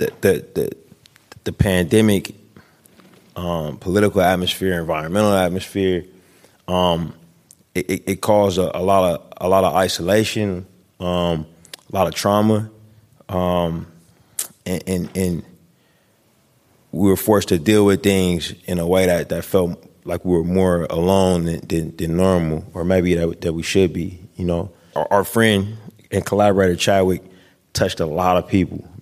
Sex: male